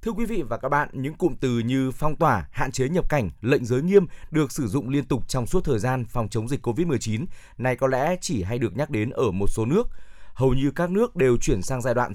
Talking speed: 260 wpm